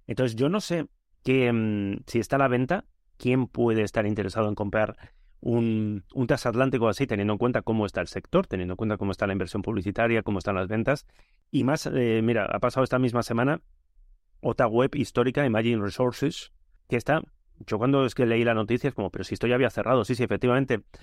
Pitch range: 100-125 Hz